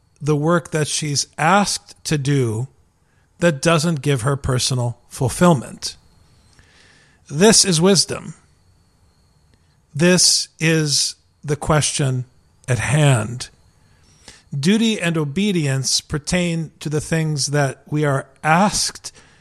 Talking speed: 100 wpm